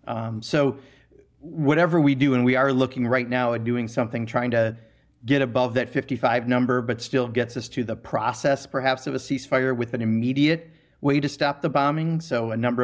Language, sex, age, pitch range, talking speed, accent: English, male, 40-59, 115-130 Hz, 200 wpm, American